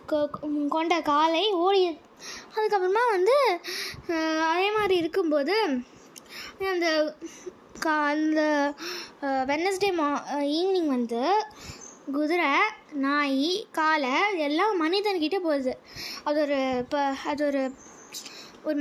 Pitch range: 285-370 Hz